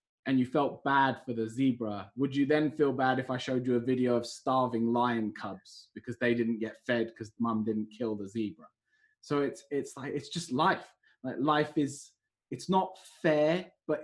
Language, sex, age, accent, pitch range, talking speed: English, male, 20-39, British, 115-145 Hz, 200 wpm